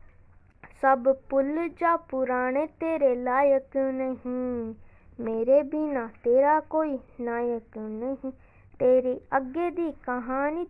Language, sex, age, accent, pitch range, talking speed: Hindi, female, 20-39, native, 255-325 Hz, 95 wpm